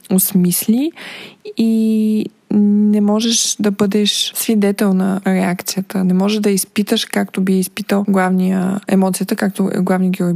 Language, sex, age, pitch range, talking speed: Bulgarian, female, 20-39, 185-225 Hz, 120 wpm